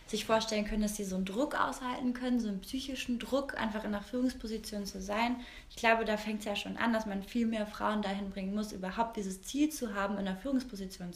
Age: 20-39